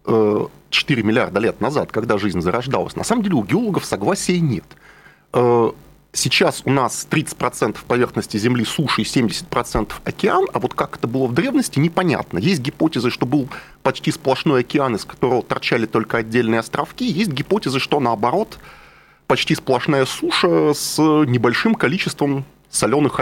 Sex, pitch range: male, 120-165 Hz